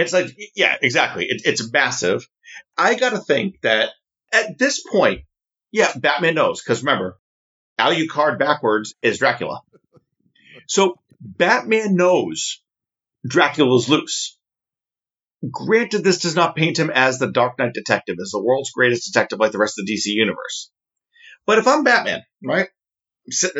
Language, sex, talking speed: English, male, 155 wpm